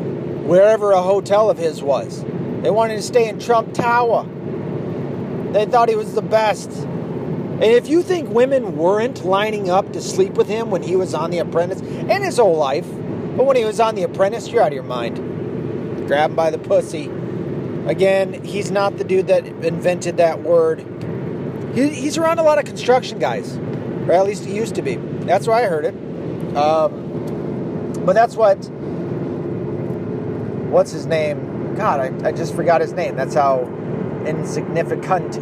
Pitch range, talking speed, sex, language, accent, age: 175-225 Hz, 175 wpm, male, English, American, 40-59